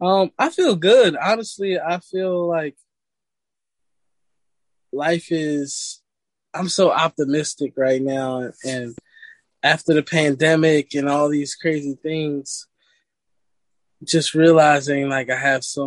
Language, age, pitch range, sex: Indonesian, 20-39, 130-165 Hz, male